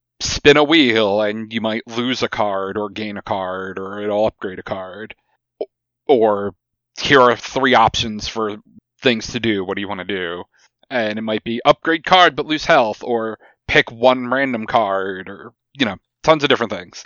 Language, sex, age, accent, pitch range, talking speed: English, male, 30-49, American, 105-125 Hz, 190 wpm